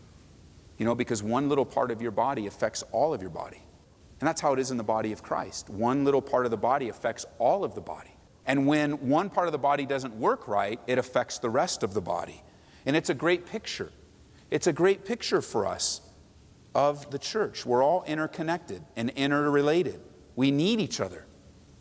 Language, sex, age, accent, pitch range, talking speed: English, male, 40-59, American, 100-145 Hz, 205 wpm